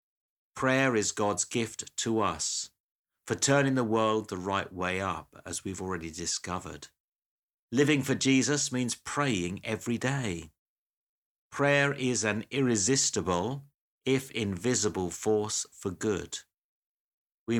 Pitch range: 95-125 Hz